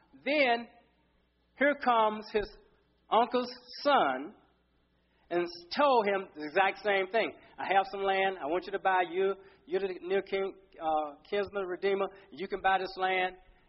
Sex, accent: male, American